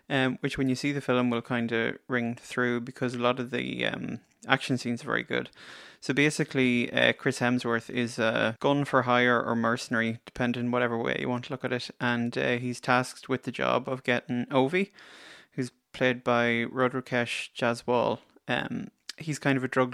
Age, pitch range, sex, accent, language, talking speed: 20-39, 120-130 Hz, male, Irish, English, 195 wpm